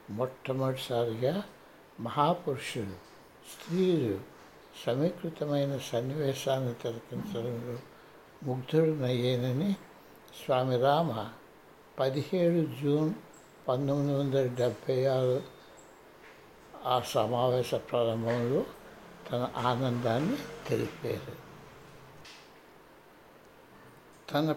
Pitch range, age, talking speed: 130-165 Hz, 60-79, 55 wpm